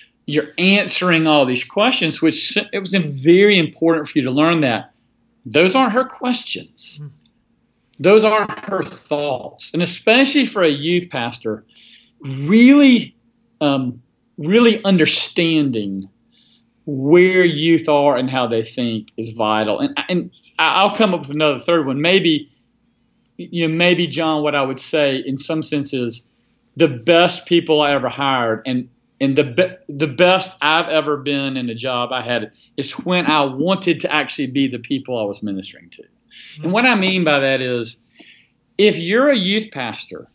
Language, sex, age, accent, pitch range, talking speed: English, male, 40-59, American, 135-180 Hz, 165 wpm